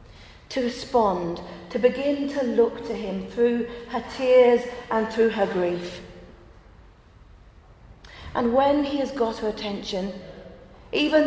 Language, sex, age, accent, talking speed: English, female, 40-59, British, 120 wpm